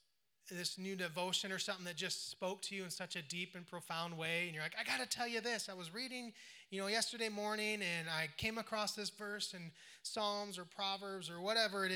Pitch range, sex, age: 155-200 Hz, male, 30-49